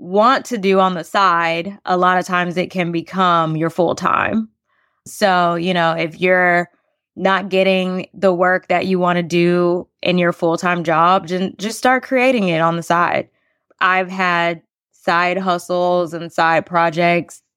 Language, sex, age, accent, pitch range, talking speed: English, female, 20-39, American, 170-190 Hz, 160 wpm